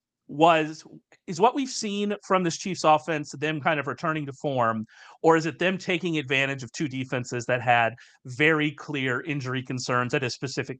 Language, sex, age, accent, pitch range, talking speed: English, male, 30-49, American, 125-160 Hz, 185 wpm